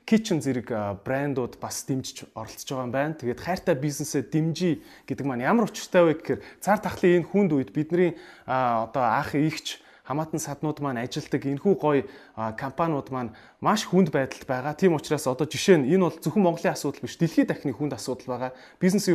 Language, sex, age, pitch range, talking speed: Hungarian, male, 30-49, 130-170 Hz, 155 wpm